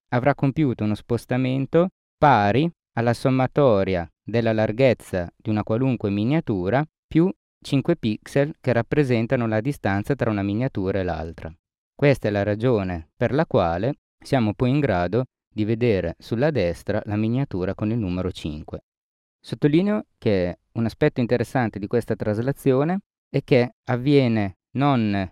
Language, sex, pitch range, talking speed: Italian, male, 100-140 Hz, 135 wpm